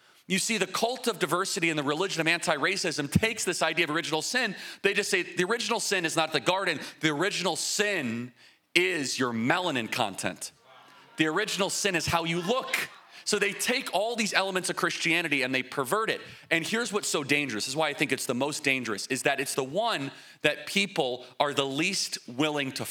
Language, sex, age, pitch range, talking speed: English, male, 30-49, 145-200 Hz, 205 wpm